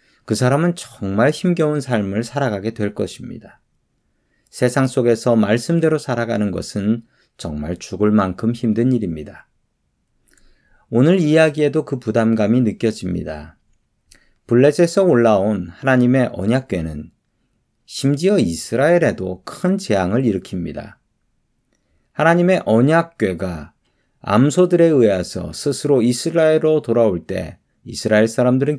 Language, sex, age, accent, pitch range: Korean, male, 40-59, native, 110-155 Hz